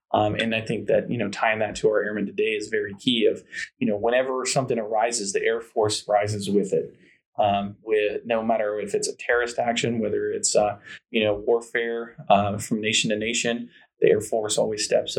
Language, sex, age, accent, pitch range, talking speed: English, male, 20-39, American, 110-150 Hz, 210 wpm